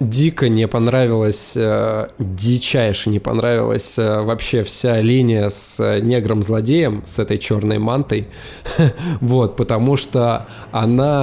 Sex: male